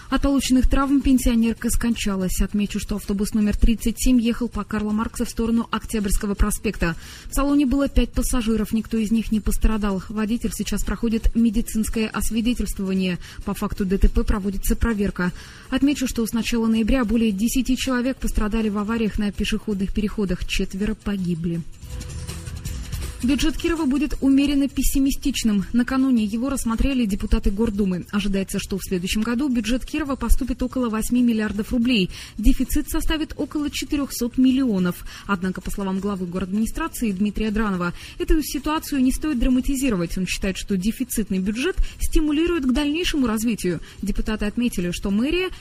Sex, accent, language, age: female, native, Russian, 20-39